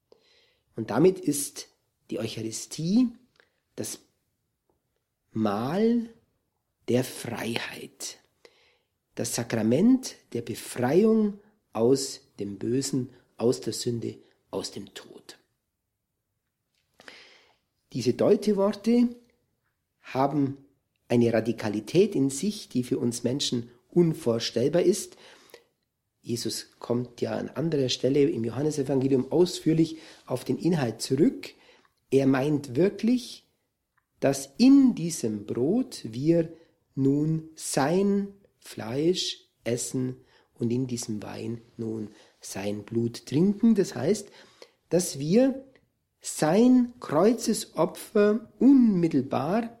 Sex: male